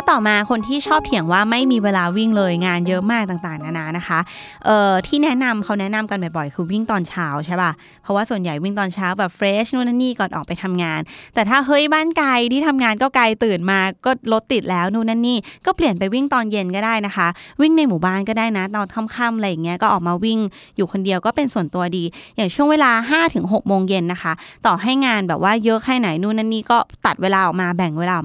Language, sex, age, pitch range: Thai, female, 20-39, 180-240 Hz